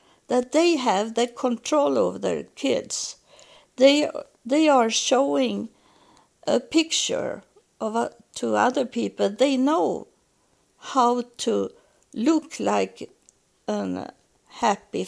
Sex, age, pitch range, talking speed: female, 60-79, 215-285 Hz, 105 wpm